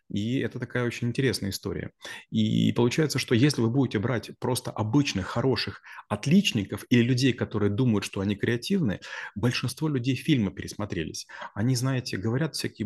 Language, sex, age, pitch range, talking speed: Russian, male, 30-49, 105-130 Hz, 150 wpm